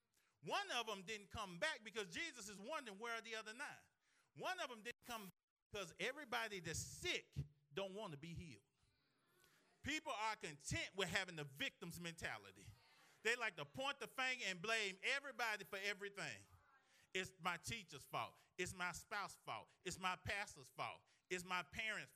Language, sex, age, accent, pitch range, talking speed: English, male, 30-49, American, 175-225 Hz, 175 wpm